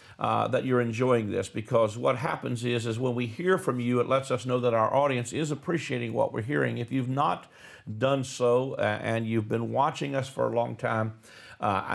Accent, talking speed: American, 215 wpm